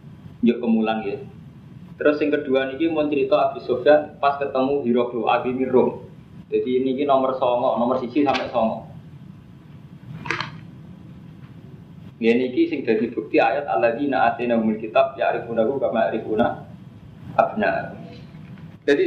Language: Indonesian